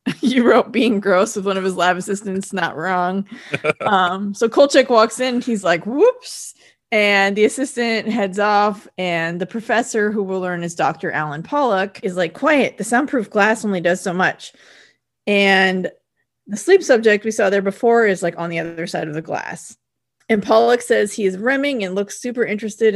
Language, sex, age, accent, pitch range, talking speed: English, female, 30-49, American, 185-240 Hz, 190 wpm